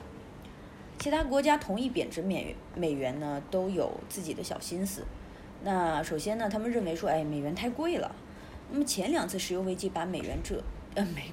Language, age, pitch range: Chinese, 20-39, 170-235 Hz